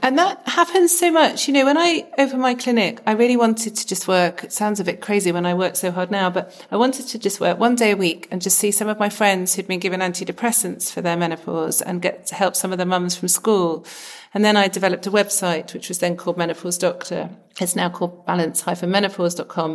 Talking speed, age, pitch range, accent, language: 240 wpm, 40-59, 175-215 Hz, British, English